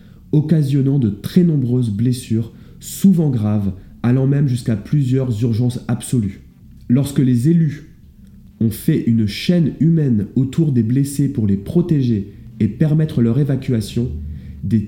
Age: 30-49